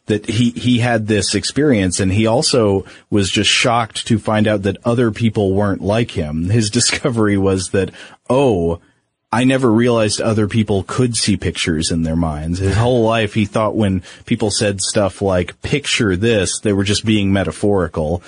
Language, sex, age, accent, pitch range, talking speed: English, male, 30-49, American, 100-125 Hz, 175 wpm